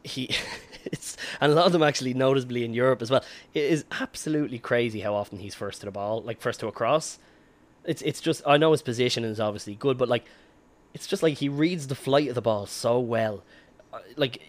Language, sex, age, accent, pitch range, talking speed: English, male, 10-29, Irish, 110-135 Hz, 225 wpm